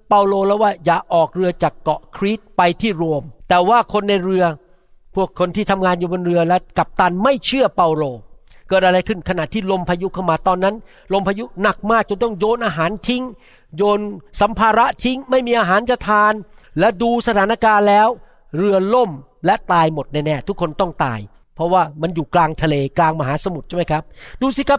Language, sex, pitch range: Thai, male, 165-230 Hz